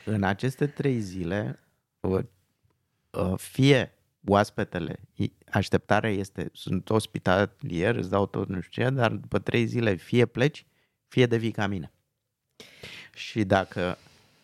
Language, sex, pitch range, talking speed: Romanian, male, 105-135 Hz, 120 wpm